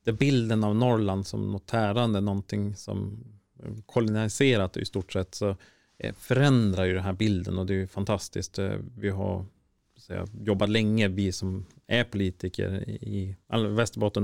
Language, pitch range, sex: Swedish, 95-110 Hz, male